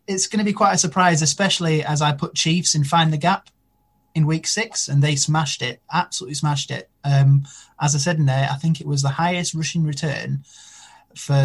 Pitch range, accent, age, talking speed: 135-160 Hz, British, 20-39, 215 wpm